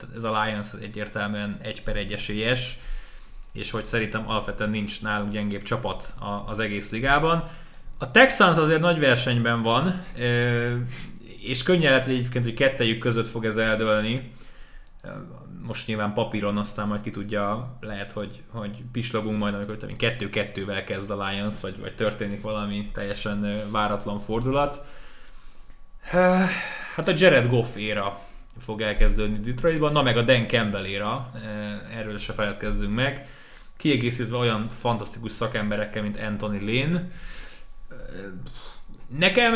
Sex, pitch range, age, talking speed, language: male, 105-130 Hz, 20-39, 130 wpm, Hungarian